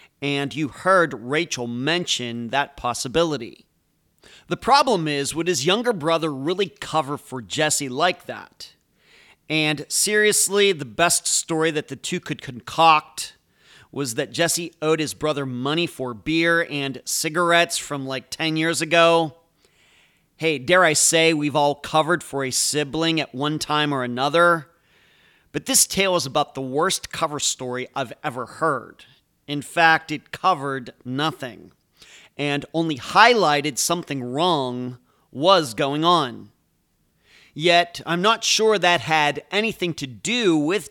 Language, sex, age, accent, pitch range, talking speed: English, male, 40-59, American, 140-175 Hz, 140 wpm